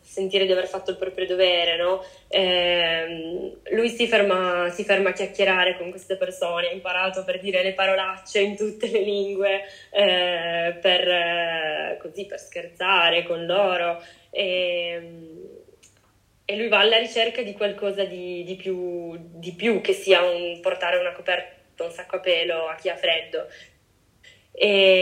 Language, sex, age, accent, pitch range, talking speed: Italian, female, 20-39, native, 180-200 Hz, 155 wpm